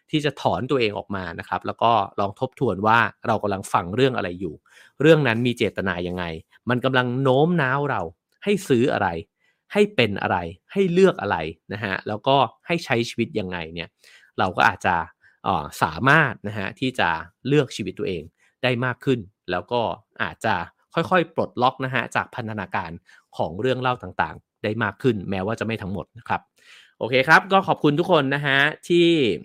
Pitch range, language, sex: 105-135 Hz, English, male